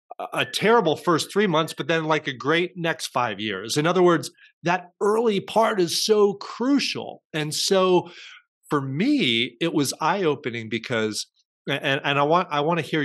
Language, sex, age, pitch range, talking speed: English, male, 30-49, 115-160 Hz, 180 wpm